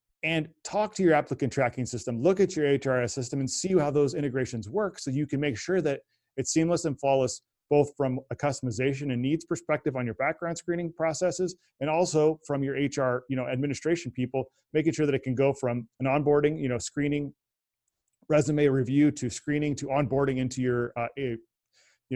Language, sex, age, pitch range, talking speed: English, male, 30-49, 125-155 Hz, 195 wpm